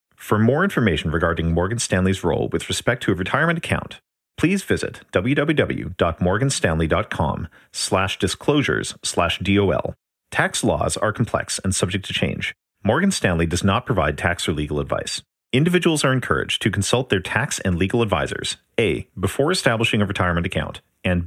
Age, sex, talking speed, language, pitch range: 40-59, male, 145 wpm, English, 85-115 Hz